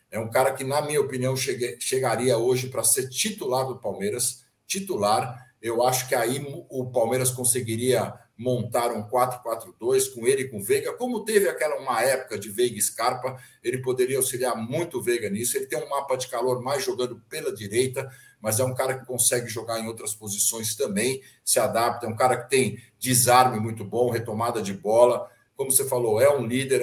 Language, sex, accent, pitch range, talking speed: Portuguese, male, Brazilian, 115-145 Hz, 190 wpm